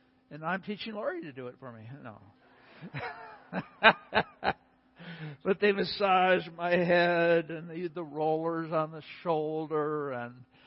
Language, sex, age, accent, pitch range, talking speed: English, male, 60-79, American, 135-205 Hz, 130 wpm